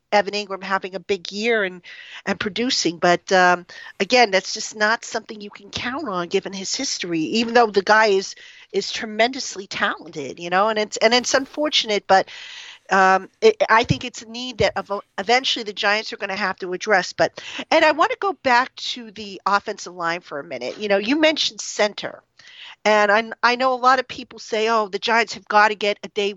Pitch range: 195-245 Hz